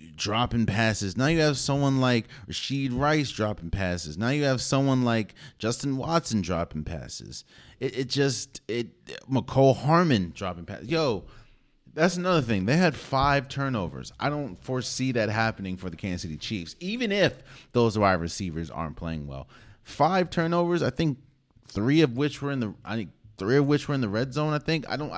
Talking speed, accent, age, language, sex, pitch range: 190 wpm, American, 30-49, English, male, 90-135 Hz